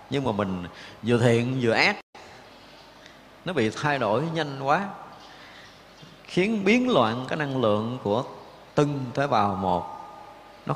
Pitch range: 105-135 Hz